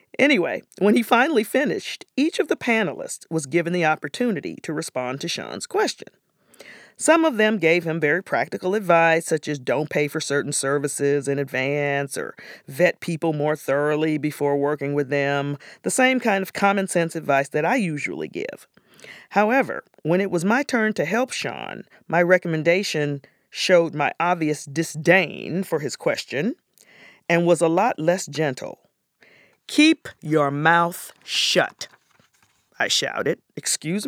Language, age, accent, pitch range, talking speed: English, 40-59, American, 150-210 Hz, 150 wpm